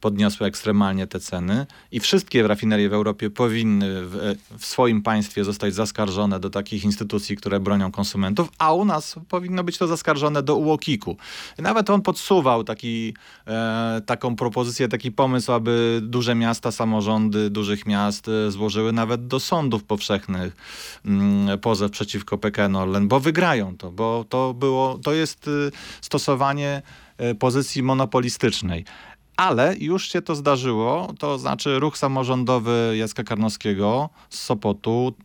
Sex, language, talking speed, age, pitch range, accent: male, Polish, 130 wpm, 30-49, 105-130 Hz, native